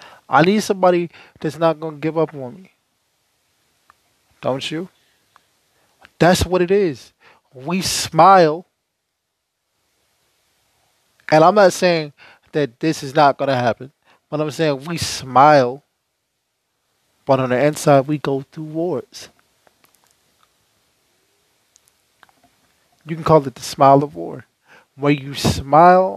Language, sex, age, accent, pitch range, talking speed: English, male, 20-39, American, 140-170 Hz, 125 wpm